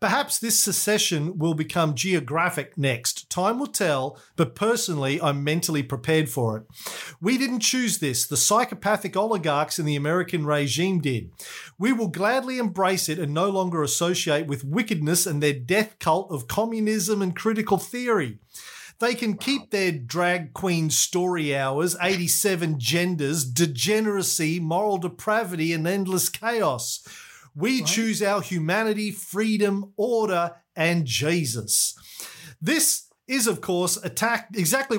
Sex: male